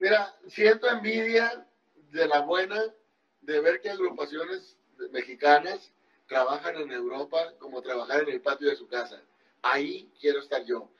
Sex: male